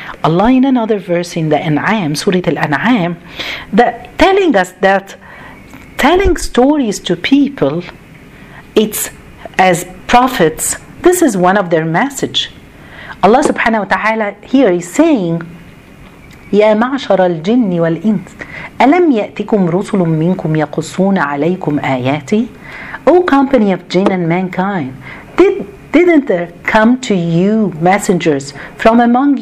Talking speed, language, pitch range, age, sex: 120 wpm, Arabic, 175-250 Hz, 50-69, female